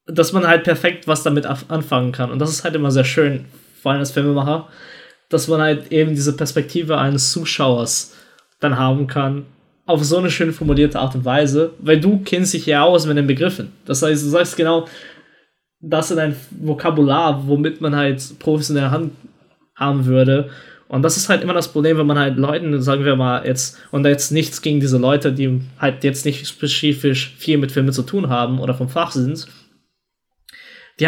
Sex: male